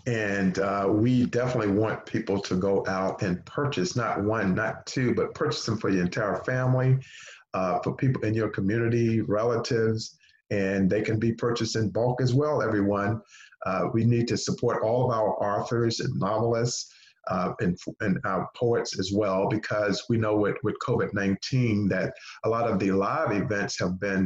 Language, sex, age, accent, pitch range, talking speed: English, male, 50-69, American, 100-120 Hz, 180 wpm